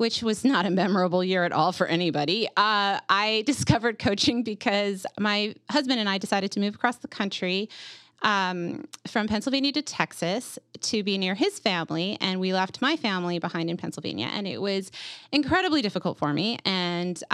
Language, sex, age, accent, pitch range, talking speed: English, female, 30-49, American, 180-225 Hz, 175 wpm